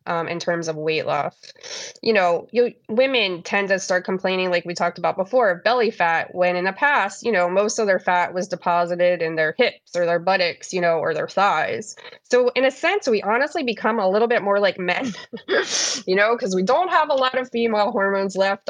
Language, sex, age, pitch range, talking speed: English, female, 20-39, 175-225 Hz, 225 wpm